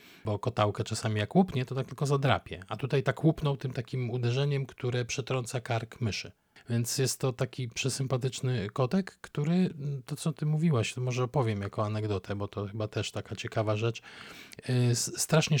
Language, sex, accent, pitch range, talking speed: Polish, male, native, 110-145 Hz, 170 wpm